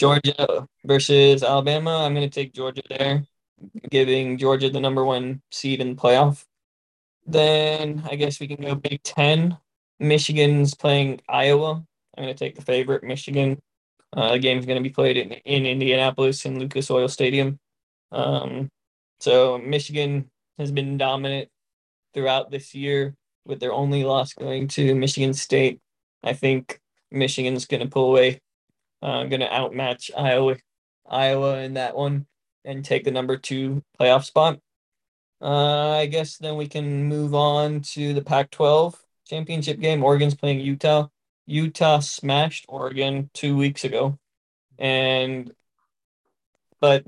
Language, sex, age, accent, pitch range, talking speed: English, male, 20-39, American, 130-145 Hz, 145 wpm